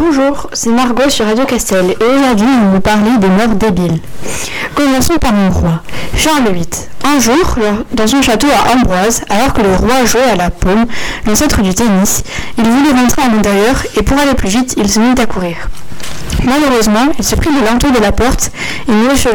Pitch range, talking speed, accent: 205-255 Hz, 205 wpm, French